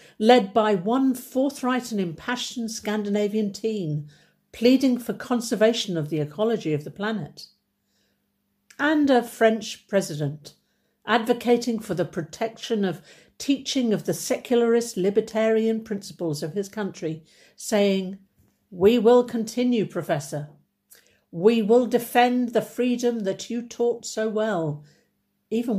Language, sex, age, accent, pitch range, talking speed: English, female, 50-69, British, 190-245 Hz, 120 wpm